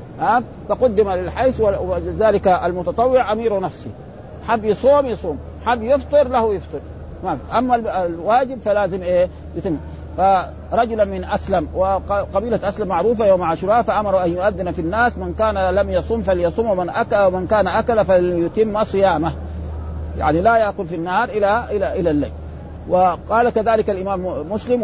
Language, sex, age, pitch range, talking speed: Arabic, male, 50-69, 175-220 Hz, 145 wpm